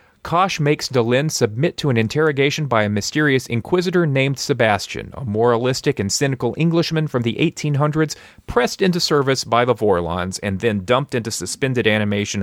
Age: 30-49